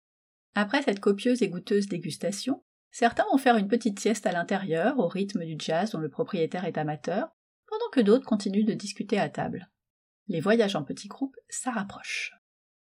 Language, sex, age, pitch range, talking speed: French, female, 30-49, 185-245 Hz, 170 wpm